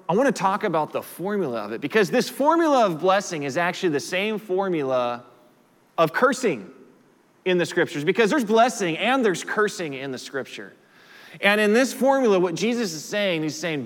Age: 20-39